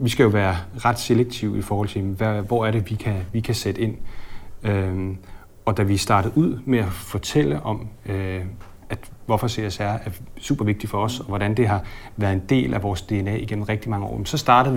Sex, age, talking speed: male, 40-59, 215 wpm